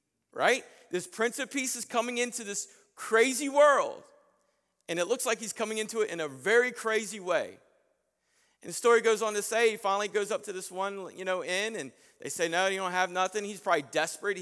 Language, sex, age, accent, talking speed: English, male, 40-59, American, 215 wpm